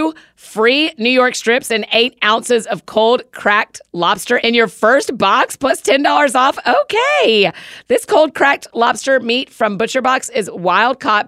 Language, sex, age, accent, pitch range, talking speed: English, female, 40-59, American, 200-255 Hz, 165 wpm